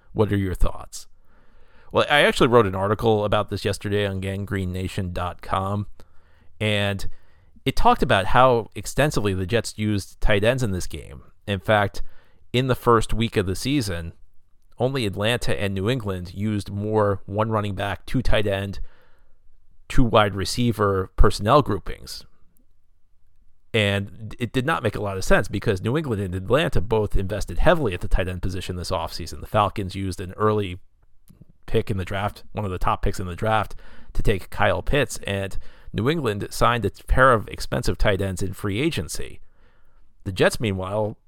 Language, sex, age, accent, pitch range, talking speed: English, male, 40-59, American, 95-110 Hz, 170 wpm